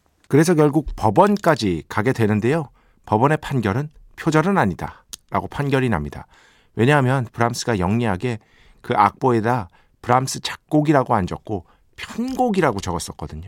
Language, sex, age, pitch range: Korean, male, 50-69, 95-155 Hz